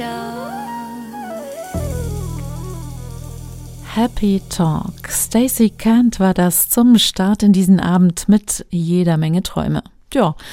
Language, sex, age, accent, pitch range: German, female, 50-69, German, 170-220 Hz